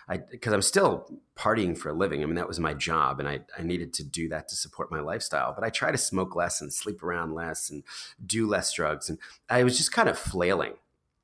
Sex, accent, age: male, American, 30-49